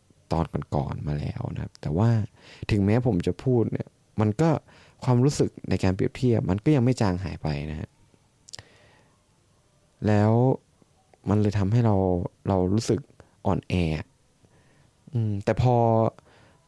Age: 20-39